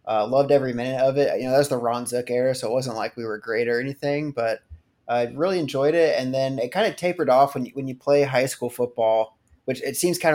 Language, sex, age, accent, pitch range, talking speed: English, male, 20-39, American, 115-135 Hz, 280 wpm